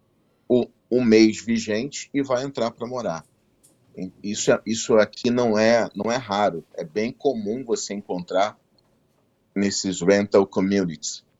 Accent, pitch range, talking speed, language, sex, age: Brazilian, 90-110 Hz, 135 wpm, Portuguese, male, 40-59